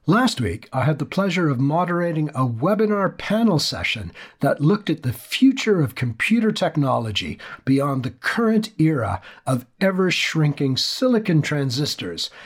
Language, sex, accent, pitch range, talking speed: English, male, American, 125-185 Hz, 135 wpm